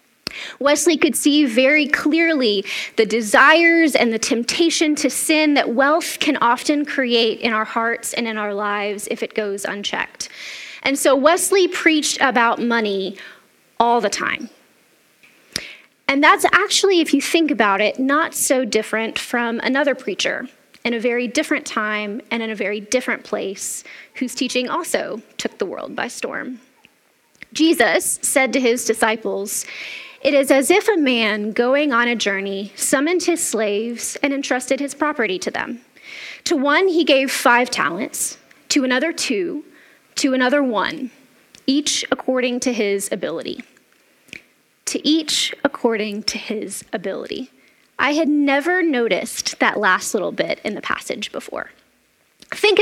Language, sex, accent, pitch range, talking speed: English, female, American, 230-300 Hz, 150 wpm